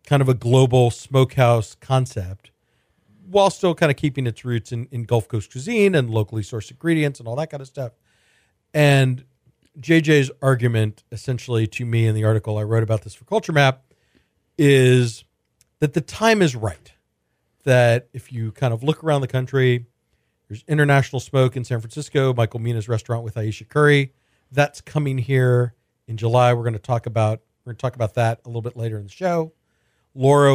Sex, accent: male, American